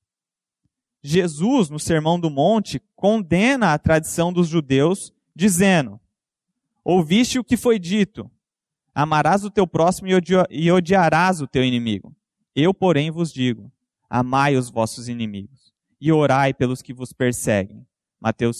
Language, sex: Portuguese, male